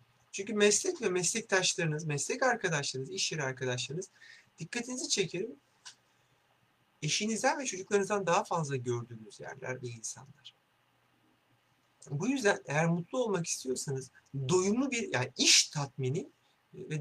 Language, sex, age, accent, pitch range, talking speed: Turkish, male, 60-79, native, 135-210 Hz, 110 wpm